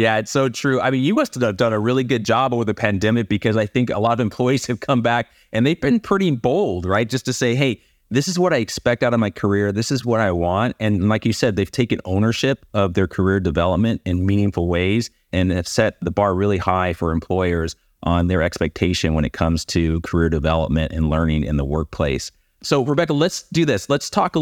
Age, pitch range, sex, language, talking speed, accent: 30-49, 90-115 Hz, male, English, 235 wpm, American